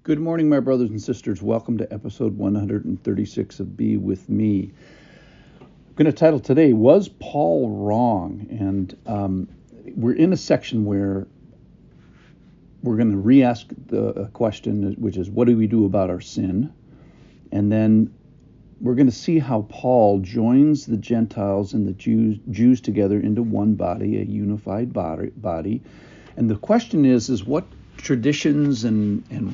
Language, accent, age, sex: English, American, 50-69, male